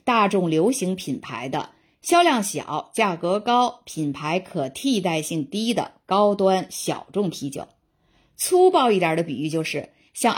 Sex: female